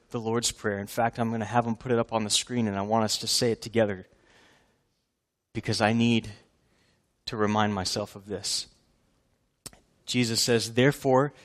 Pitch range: 115-145 Hz